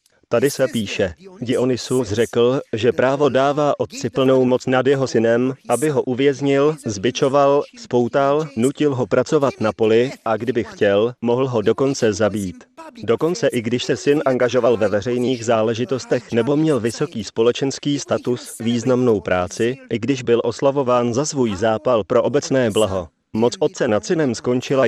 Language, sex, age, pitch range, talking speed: Slovak, male, 30-49, 110-135 Hz, 150 wpm